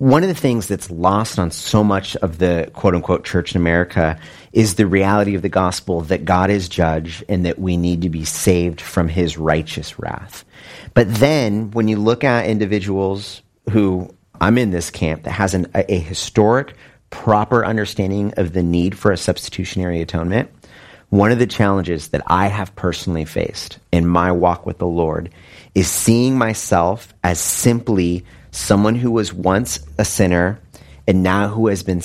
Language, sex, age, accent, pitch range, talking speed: English, male, 30-49, American, 90-110 Hz, 175 wpm